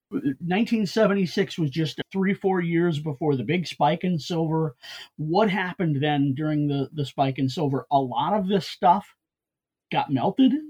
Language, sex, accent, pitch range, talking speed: English, male, American, 140-175 Hz, 155 wpm